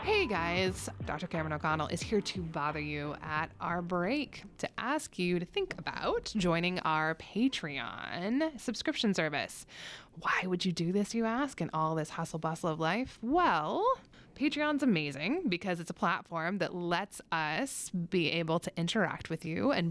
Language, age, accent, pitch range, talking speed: English, 20-39, American, 165-225 Hz, 165 wpm